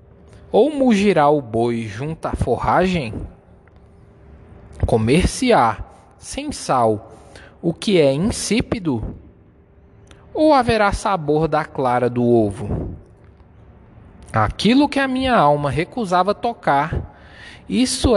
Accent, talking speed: Brazilian, 95 wpm